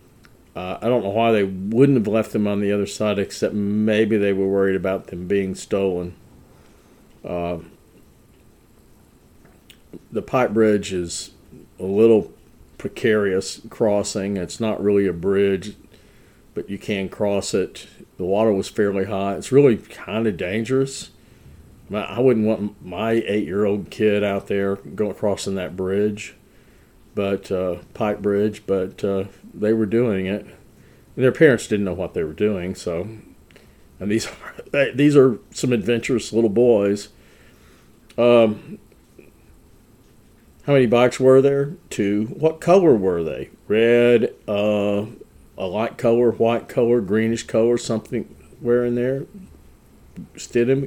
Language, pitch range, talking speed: English, 100-120 Hz, 140 wpm